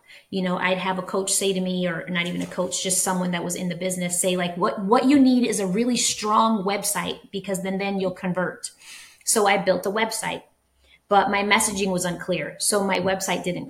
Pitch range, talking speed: 185-220 Hz, 225 wpm